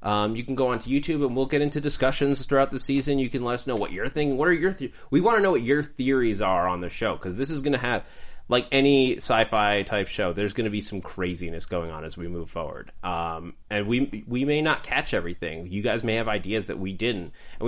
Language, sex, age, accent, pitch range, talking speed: English, male, 20-39, American, 100-140 Hz, 260 wpm